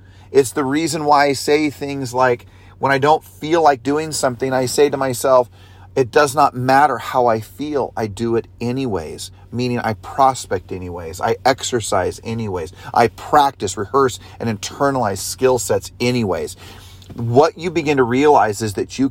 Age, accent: 40-59, American